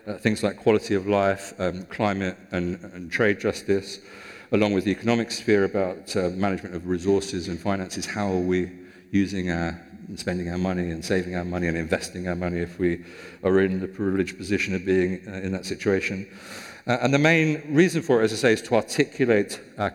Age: 50-69